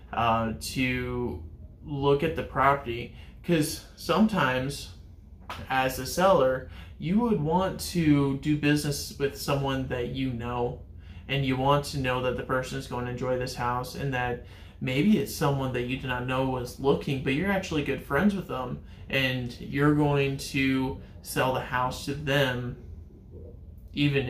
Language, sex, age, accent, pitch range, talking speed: English, male, 20-39, American, 120-140 Hz, 160 wpm